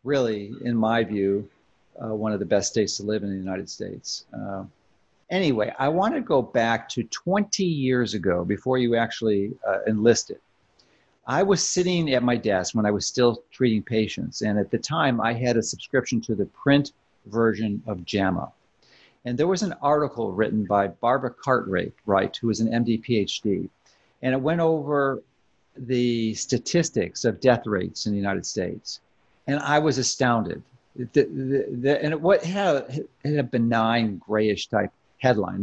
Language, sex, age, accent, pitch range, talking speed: English, male, 50-69, American, 110-140 Hz, 175 wpm